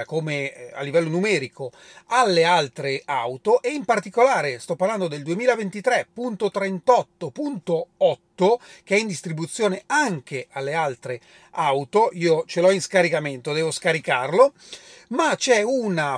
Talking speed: 120 wpm